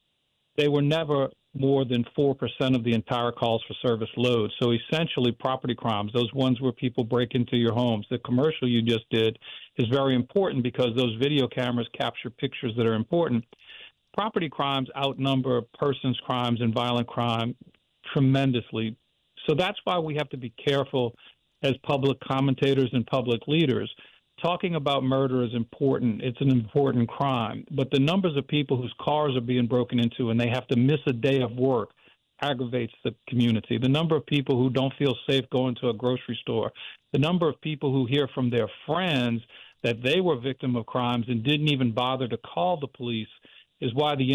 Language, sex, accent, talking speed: English, male, American, 185 wpm